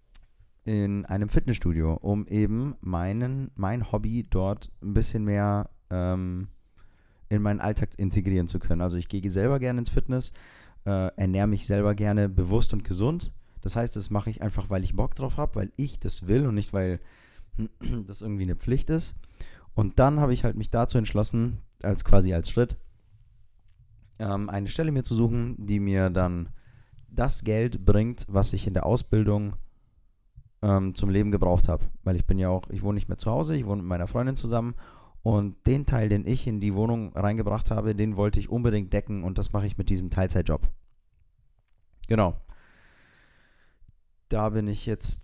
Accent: German